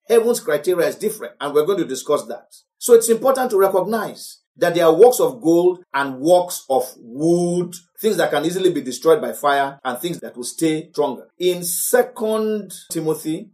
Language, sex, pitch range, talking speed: English, male, 175-255 Hz, 185 wpm